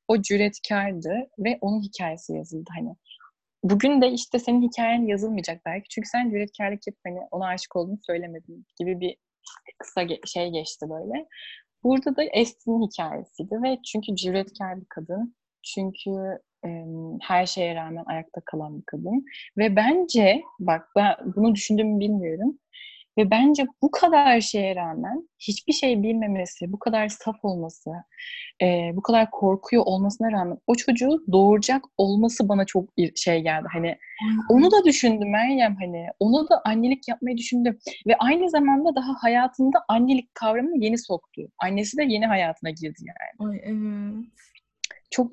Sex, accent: female, native